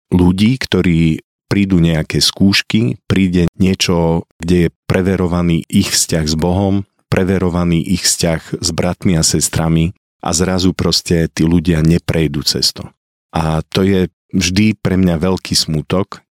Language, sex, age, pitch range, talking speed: Slovak, male, 40-59, 80-95 Hz, 130 wpm